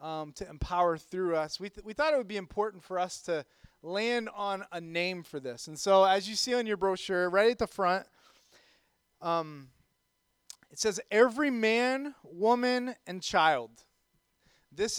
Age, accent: 30-49, American